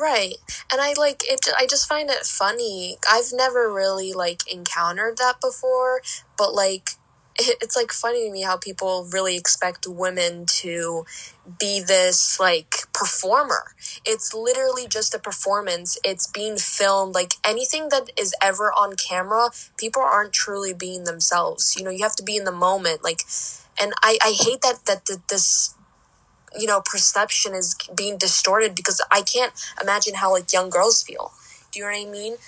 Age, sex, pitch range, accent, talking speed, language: 10-29, female, 185-230 Hz, American, 170 wpm, English